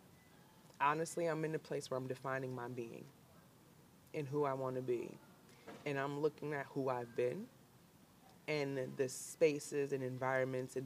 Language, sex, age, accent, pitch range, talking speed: English, female, 20-39, American, 130-170 Hz, 160 wpm